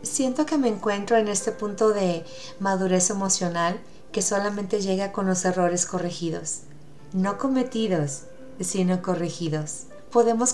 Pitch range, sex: 175-230 Hz, female